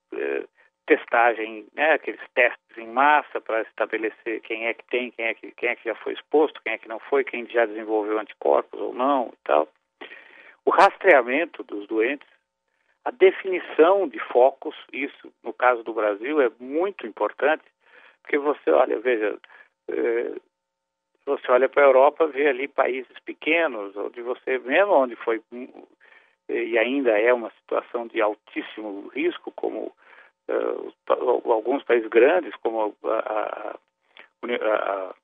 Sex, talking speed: male, 145 wpm